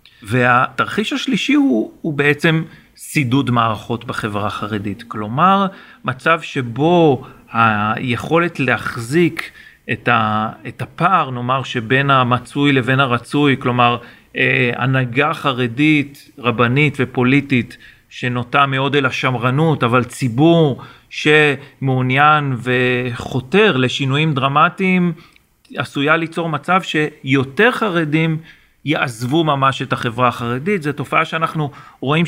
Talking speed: 95 wpm